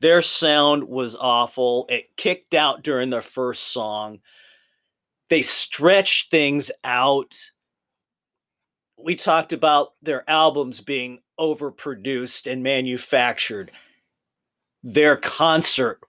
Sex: male